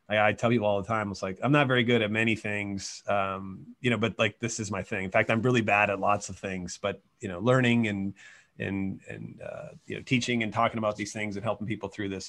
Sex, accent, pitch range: male, American, 105-120 Hz